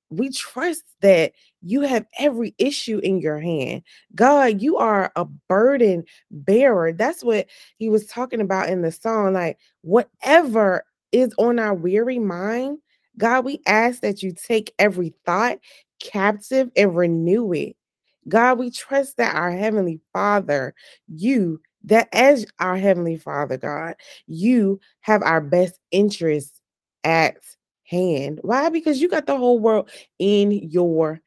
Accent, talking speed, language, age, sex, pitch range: American, 140 wpm, English, 20-39, female, 175-220 Hz